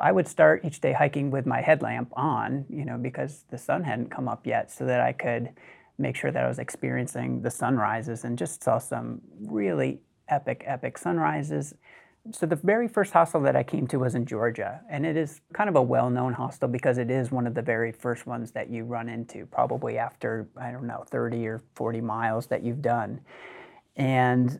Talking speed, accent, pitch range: 205 wpm, American, 120-150 Hz